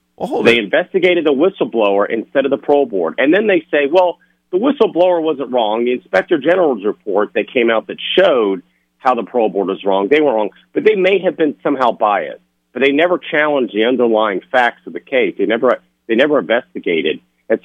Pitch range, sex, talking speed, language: 90-145 Hz, male, 200 wpm, English